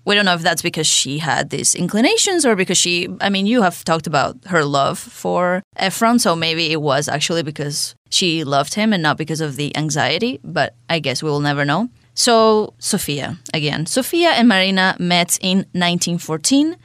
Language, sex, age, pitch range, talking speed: English, female, 20-39, 150-195 Hz, 190 wpm